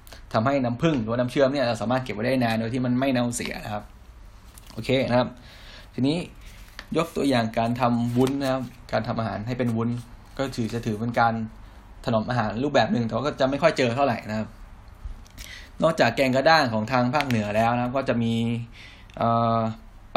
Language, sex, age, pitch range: Thai, male, 10-29, 105-125 Hz